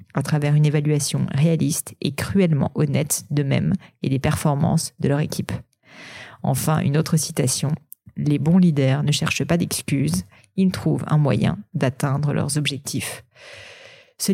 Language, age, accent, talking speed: French, 30-49, French, 140 wpm